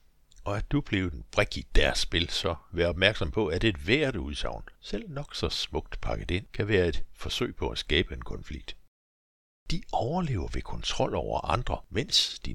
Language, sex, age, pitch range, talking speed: Danish, male, 60-79, 75-105 Hz, 195 wpm